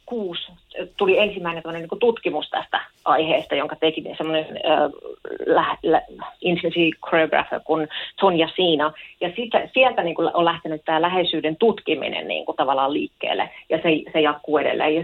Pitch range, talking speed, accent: 155-190 Hz, 145 wpm, native